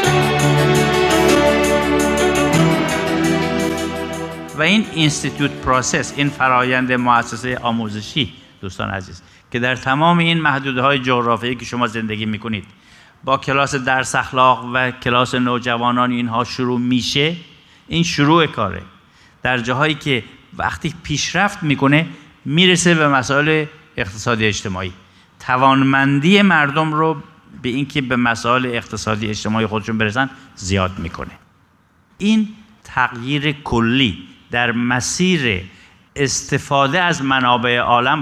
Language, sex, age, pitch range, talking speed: Persian, male, 50-69, 105-135 Hz, 105 wpm